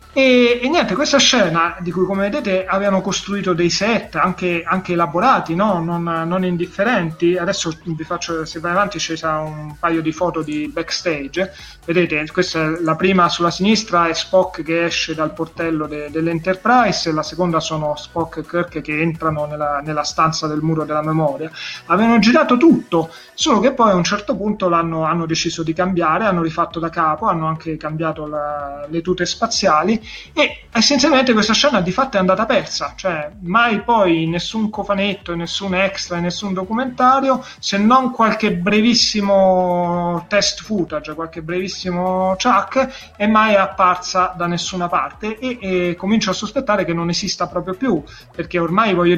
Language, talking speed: Italian, 165 wpm